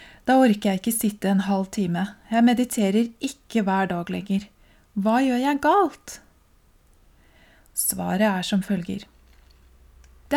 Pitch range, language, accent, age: 185-230 Hz, English, Swedish, 30-49